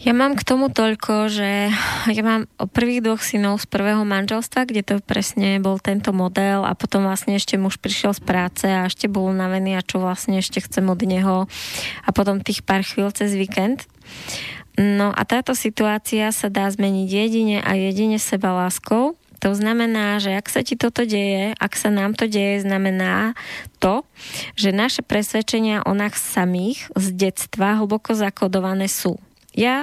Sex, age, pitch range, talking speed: female, 20-39, 190-215 Hz, 170 wpm